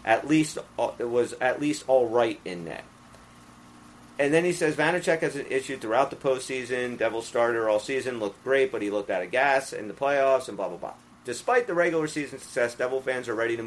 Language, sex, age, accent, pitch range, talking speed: English, male, 40-59, American, 105-150 Hz, 220 wpm